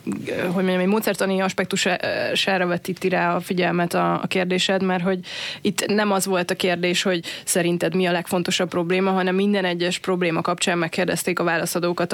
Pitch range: 175-190 Hz